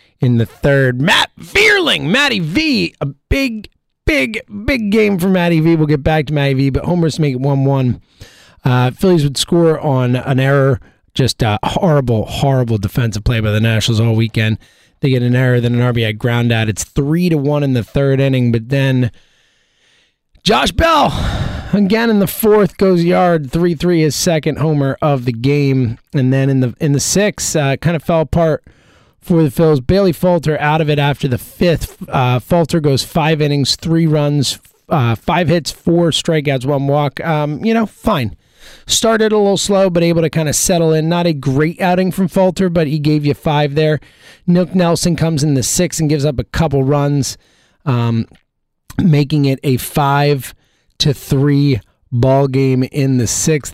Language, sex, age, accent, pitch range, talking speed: English, male, 30-49, American, 130-170 Hz, 185 wpm